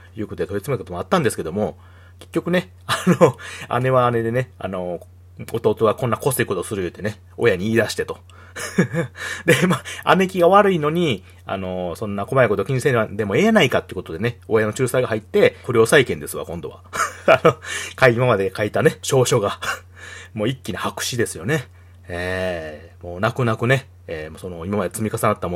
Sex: male